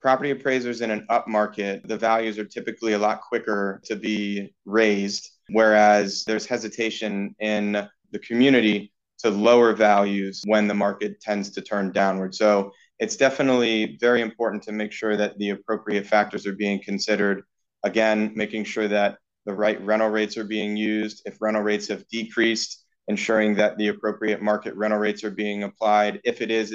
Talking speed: 170 wpm